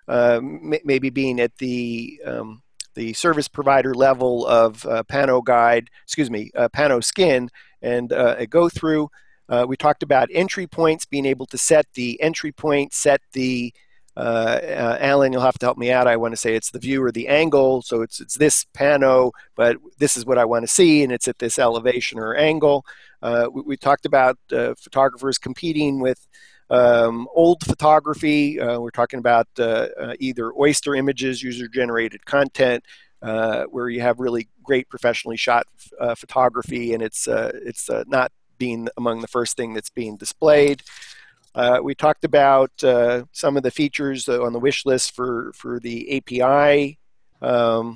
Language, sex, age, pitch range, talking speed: English, male, 40-59, 120-145 Hz, 180 wpm